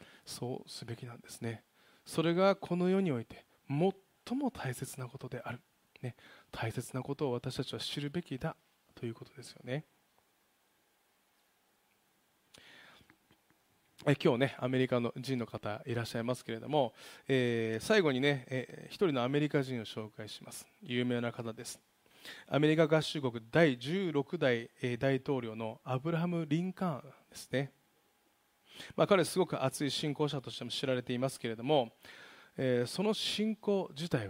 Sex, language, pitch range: male, Japanese, 120-160 Hz